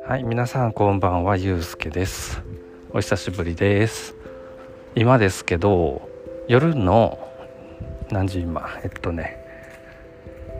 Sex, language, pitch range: male, Japanese, 85-120 Hz